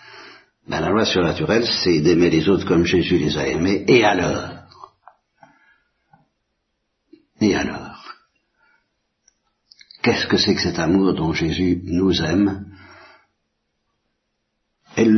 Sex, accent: male, French